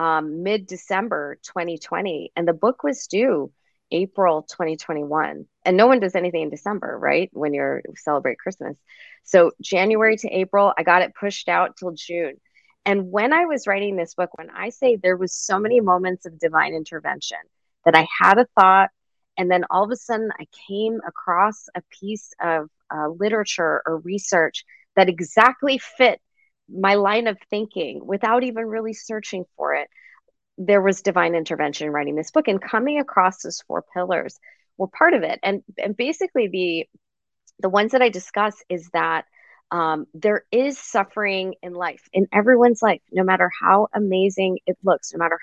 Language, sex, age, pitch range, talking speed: English, female, 30-49, 170-210 Hz, 175 wpm